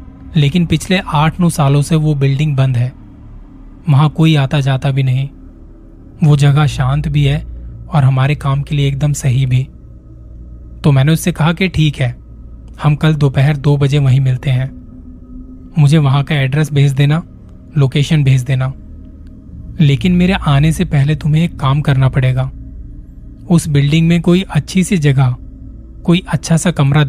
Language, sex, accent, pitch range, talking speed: Hindi, male, native, 130-155 Hz, 165 wpm